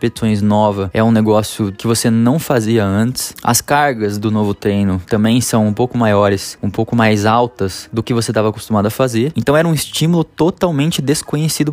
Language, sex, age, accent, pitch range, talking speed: Portuguese, male, 20-39, Brazilian, 105-140 Hz, 190 wpm